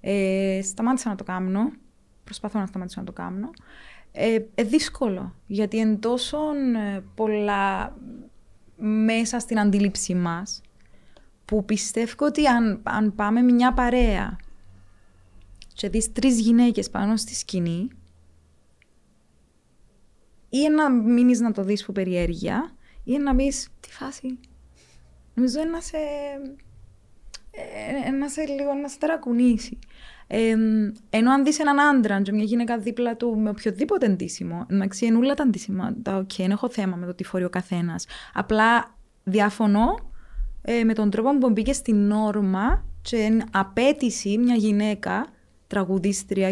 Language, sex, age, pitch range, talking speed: Greek, female, 20-39, 195-245 Hz, 120 wpm